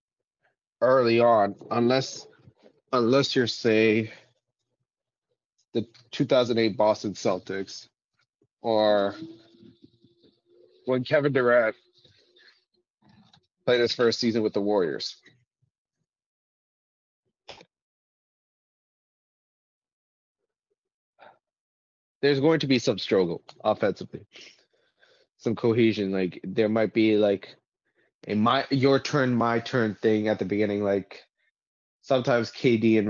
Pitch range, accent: 105-130 Hz, American